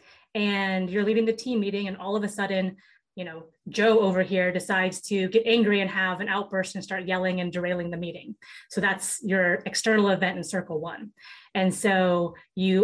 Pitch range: 185-220 Hz